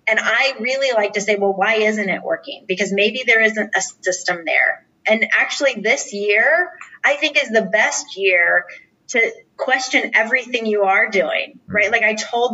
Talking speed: 180 wpm